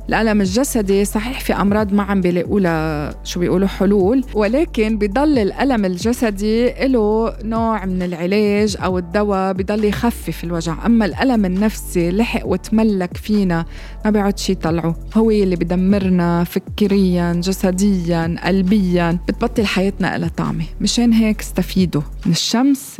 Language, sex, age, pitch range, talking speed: Arabic, female, 20-39, 175-220 Hz, 130 wpm